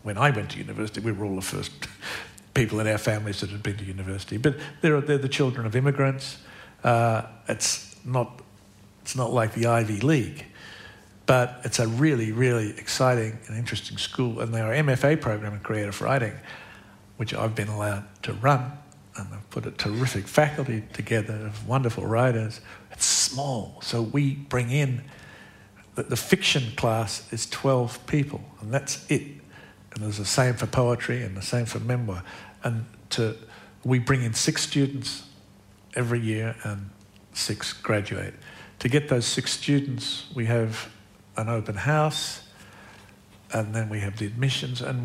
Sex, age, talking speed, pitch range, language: male, 60-79, 165 wpm, 105-130 Hz, English